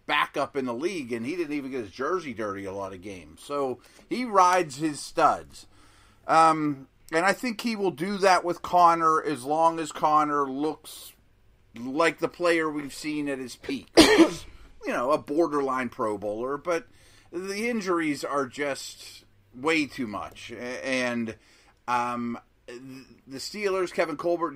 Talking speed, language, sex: 155 wpm, English, male